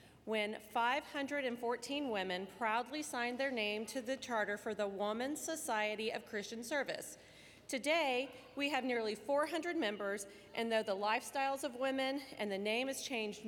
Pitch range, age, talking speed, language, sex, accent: 200-245 Hz, 40-59, 150 wpm, English, female, American